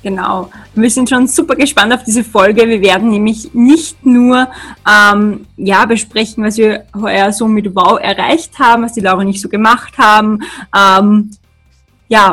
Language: German